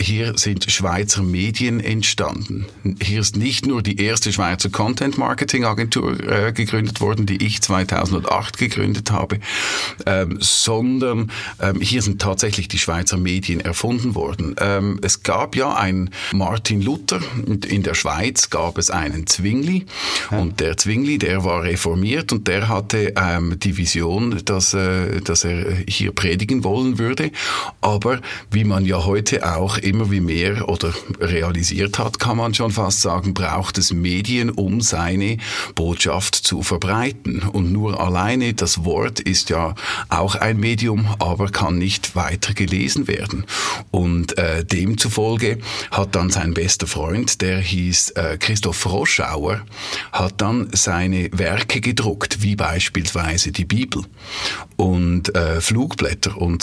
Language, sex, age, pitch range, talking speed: German, male, 50-69, 90-110 Hz, 135 wpm